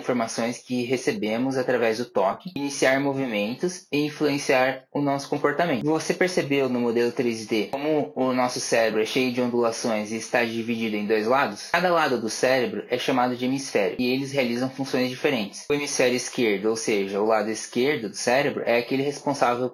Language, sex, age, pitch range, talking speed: Portuguese, male, 20-39, 125-145 Hz, 175 wpm